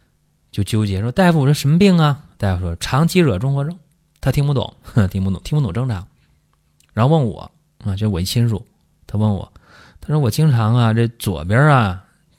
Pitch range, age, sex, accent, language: 90-130 Hz, 30-49, male, native, Chinese